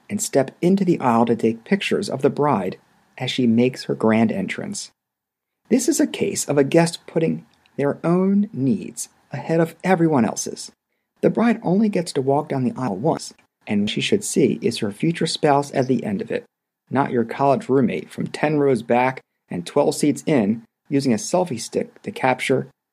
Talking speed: 190 wpm